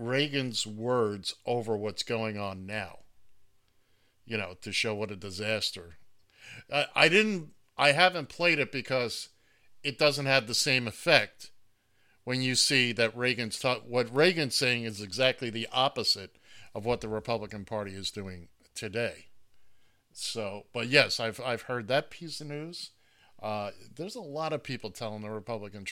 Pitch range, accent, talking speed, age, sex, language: 100-125 Hz, American, 155 wpm, 50-69, male, English